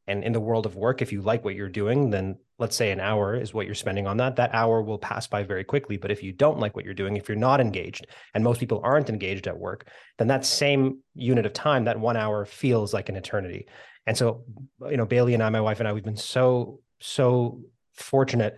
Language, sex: English, male